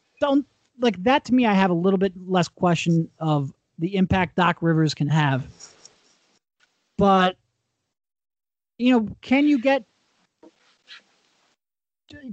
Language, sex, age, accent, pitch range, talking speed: English, male, 30-49, American, 160-205 Hz, 120 wpm